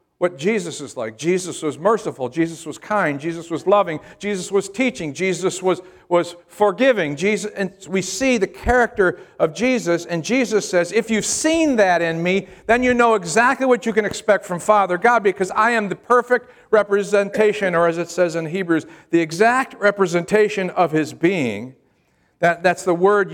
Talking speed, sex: 180 wpm, male